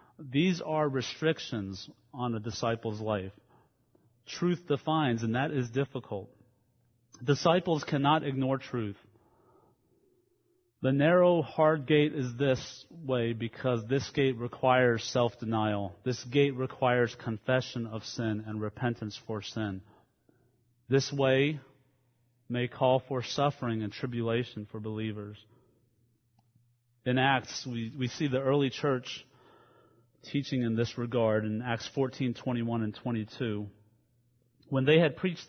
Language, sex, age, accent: English, male, 30-49, American